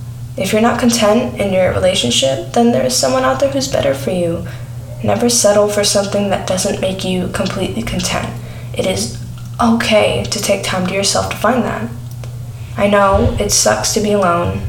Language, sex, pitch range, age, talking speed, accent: English, female, 120-195 Hz, 10-29, 185 wpm, American